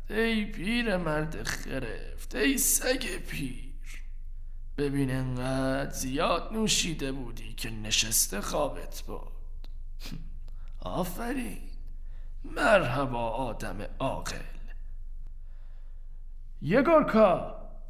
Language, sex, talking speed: Persian, male, 70 wpm